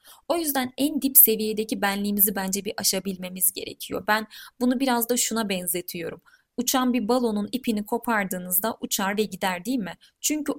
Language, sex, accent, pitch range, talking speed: Turkish, female, native, 205-245 Hz, 155 wpm